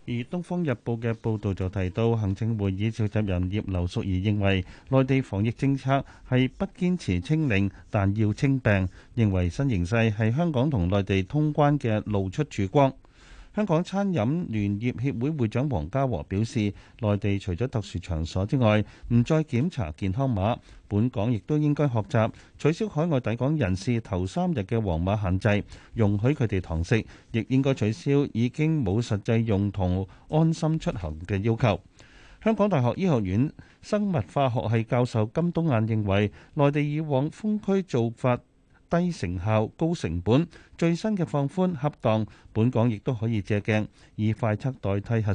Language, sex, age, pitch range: Chinese, male, 30-49, 100-145 Hz